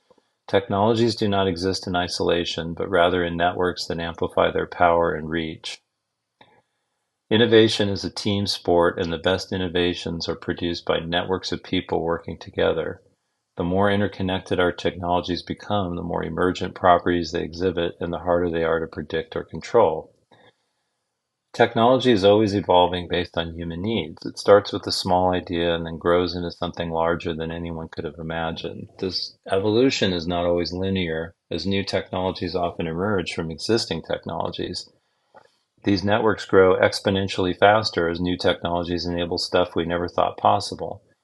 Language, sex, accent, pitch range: English, male, American, 85-95 Hz